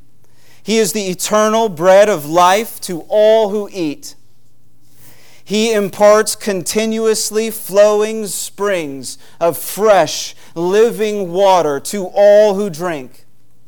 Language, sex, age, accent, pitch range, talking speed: English, male, 40-59, American, 145-205 Hz, 105 wpm